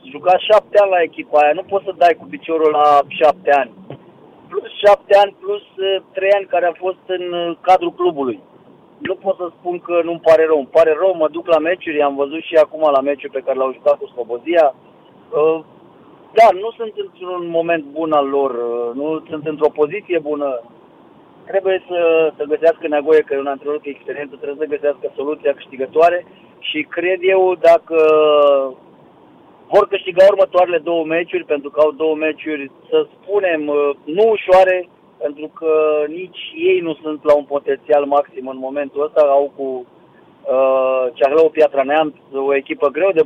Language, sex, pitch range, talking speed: Romanian, male, 150-185 Hz, 175 wpm